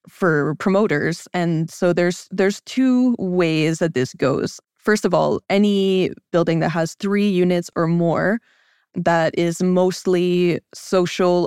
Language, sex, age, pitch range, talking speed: English, female, 20-39, 170-195 Hz, 135 wpm